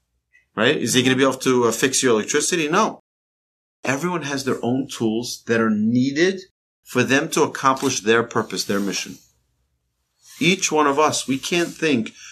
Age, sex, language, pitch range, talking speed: 40-59, male, English, 85-140 Hz, 175 wpm